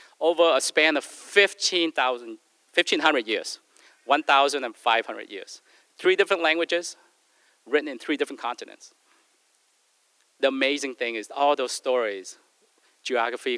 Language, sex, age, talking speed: English, male, 40-59, 105 wpm